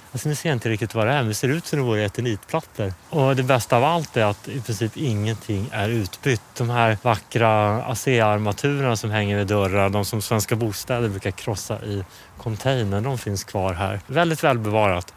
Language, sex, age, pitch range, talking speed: English, male, 30-49, 105-135 Hz, 190 wpm